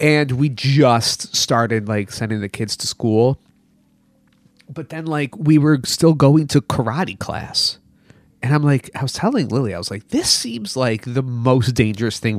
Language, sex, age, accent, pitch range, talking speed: English, male, 30-49, American, 115-175 Hz, 180 wpm